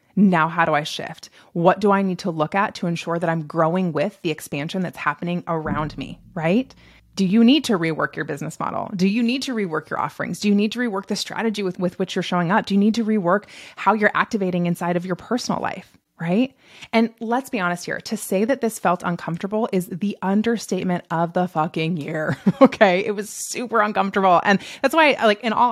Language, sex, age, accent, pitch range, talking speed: English, female, 20-39, American, 175-225 Hz, 225 wpm